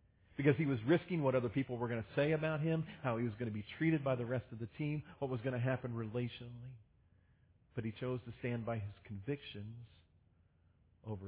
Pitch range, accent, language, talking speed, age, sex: 105-150 Hz, American, English, 220 wpm, 40-59, male